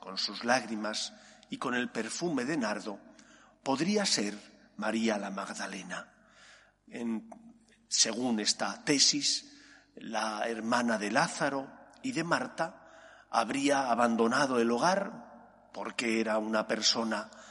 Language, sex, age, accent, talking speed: Spanish, male, 40-59, Spanish, 110 wpm